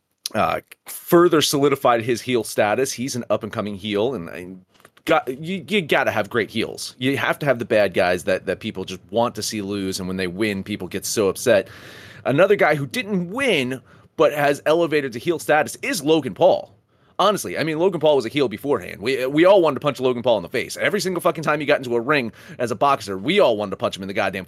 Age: 30-49